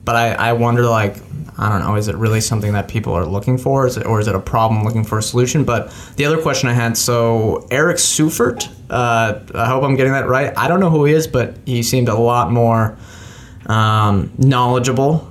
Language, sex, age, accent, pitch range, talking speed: English, male, 20-39, American, 110-125 Hz, 225 wpm